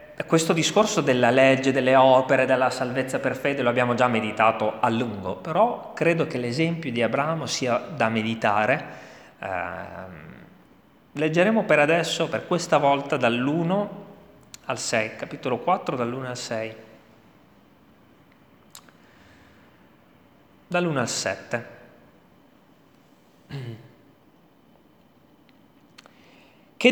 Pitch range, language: 125-180 Hz, Italian